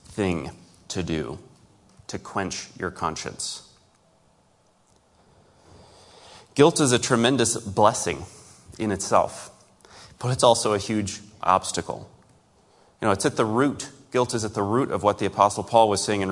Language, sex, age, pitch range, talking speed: English, male, 30-49, 95-120 Hz, 145 wpm